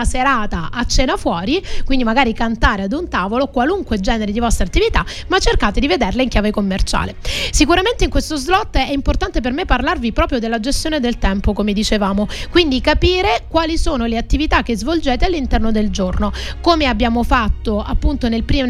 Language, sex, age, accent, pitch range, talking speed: Italian, female, 30-49, native, 230-300 Hz, 175 wpm